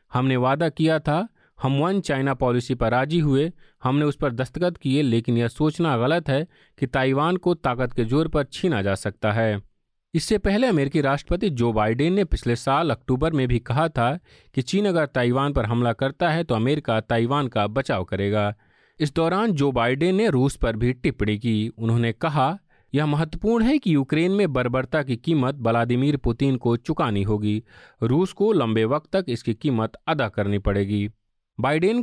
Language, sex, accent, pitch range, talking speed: Hindi, male, native, 115-160 Hz, 180 wpm